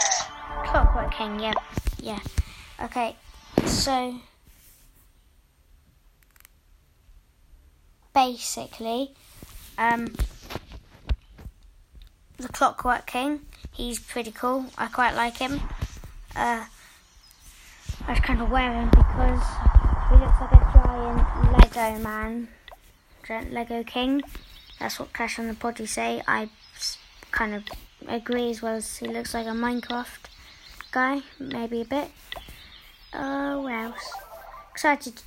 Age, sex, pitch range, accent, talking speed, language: 10-29, female, 220-250 Hz, British, 110 wpm, English